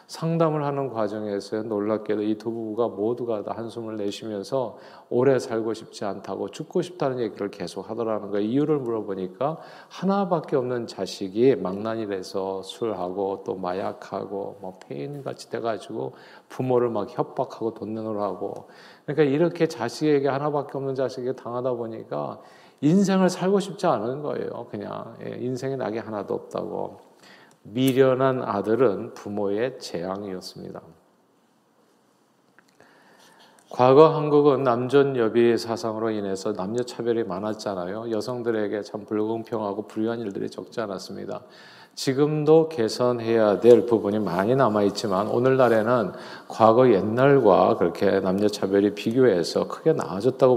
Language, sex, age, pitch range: Korean, male, 40-59, 105-135 Hz